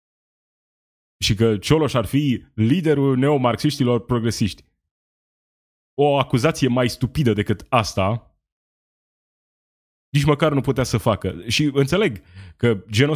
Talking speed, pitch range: 110 wpm, 100-130 Hz